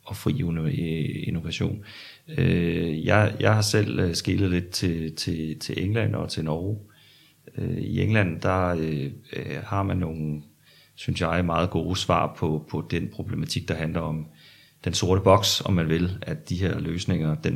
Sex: male